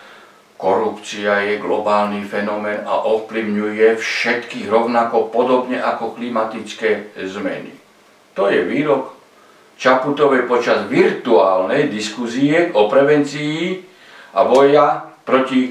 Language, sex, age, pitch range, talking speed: Slovak, male, 60-79, 110-170 Hz, 90 wpm